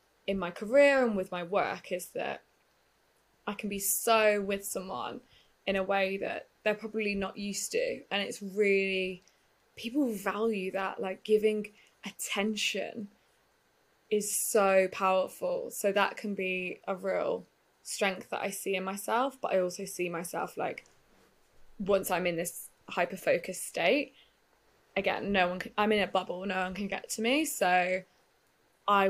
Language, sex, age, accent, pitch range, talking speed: English, female, 20-39, British, 190-220 Hz, 155 wpm